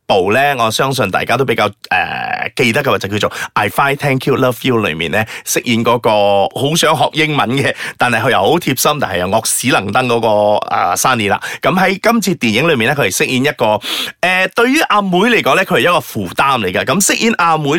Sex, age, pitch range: male, 30-49, 115-180 Hz